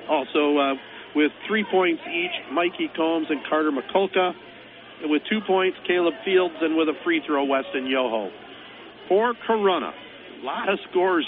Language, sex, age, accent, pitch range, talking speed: English, male, 50-69, American, 150-200 Hz, 155 wpm